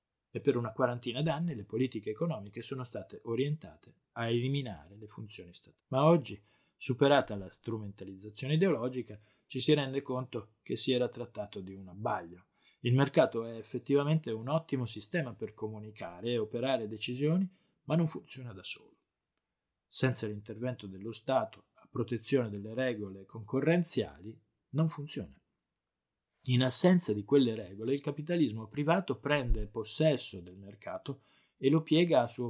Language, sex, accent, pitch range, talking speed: Italian, male, native, 105-140 Hz, 145 wpm